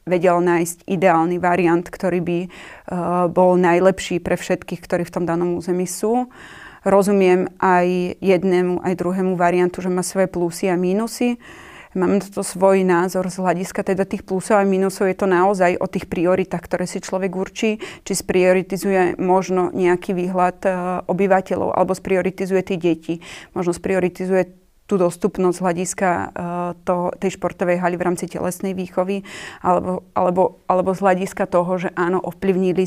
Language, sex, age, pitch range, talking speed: Slovak, female, 30-49, 180-190 Hz, 150 wpm